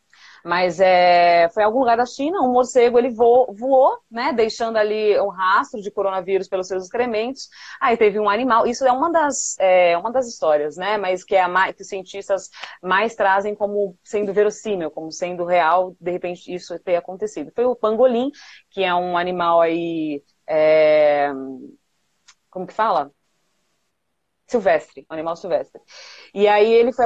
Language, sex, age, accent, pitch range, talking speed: Portuguese, female, 30-49, Brazilian, 180-235 Hz, 165 wpm